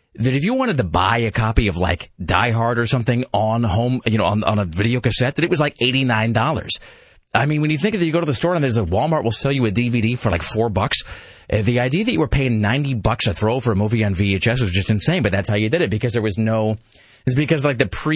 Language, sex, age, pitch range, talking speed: English, male, 30-49, 105-130 Hz, 285 wpm